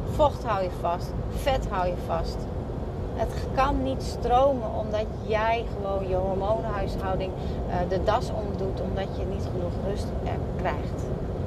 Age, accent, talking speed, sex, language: 30-49, Dutch, 135 wpm, female, Dutch